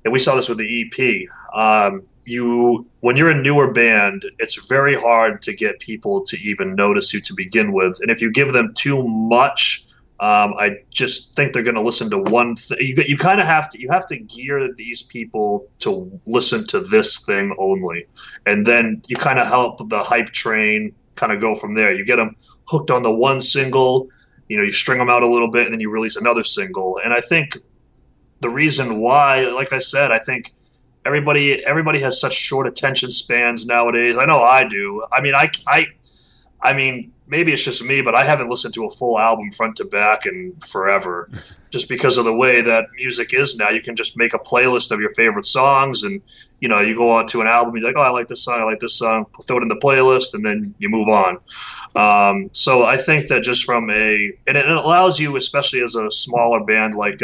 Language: English